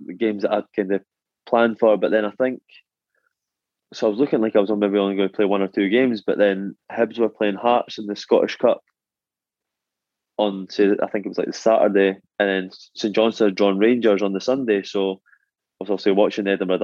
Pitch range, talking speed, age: 95-110 Hz, 230 wpm, 20-39